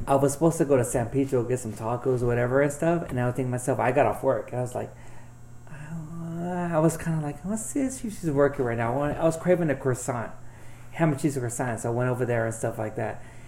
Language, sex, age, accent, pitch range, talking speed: English, male, 30-49, American, 120-140 Hz, 265 wpm